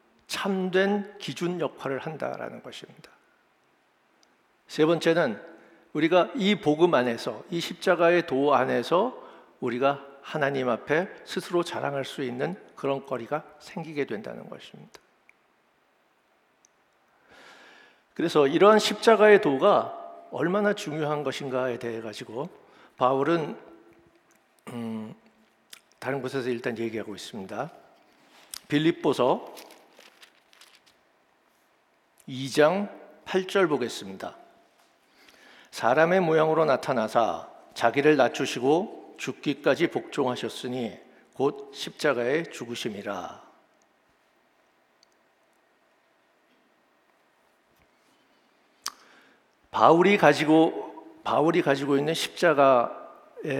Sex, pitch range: male, 135-190 Hz